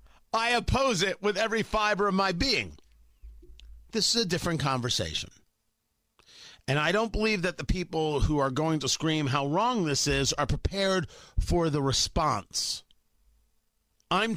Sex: male